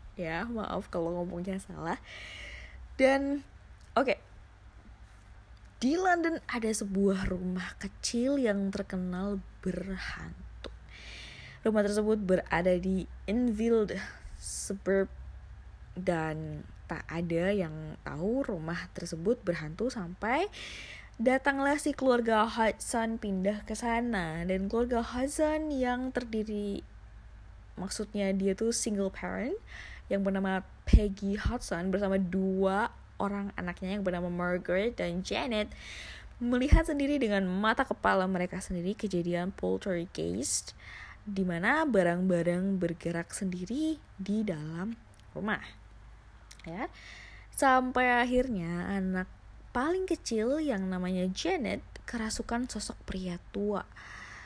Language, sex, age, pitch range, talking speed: Indonesian, female, 20-39, 175-230 Hz, 100 wpm